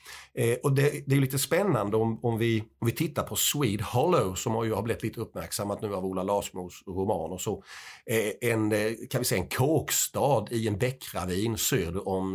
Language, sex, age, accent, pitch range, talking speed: Swedish, male, 50-69, native, 95-125 Hz, 205 wpm